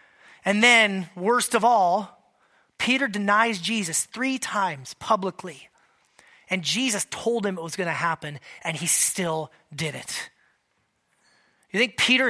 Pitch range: 195-260 Hz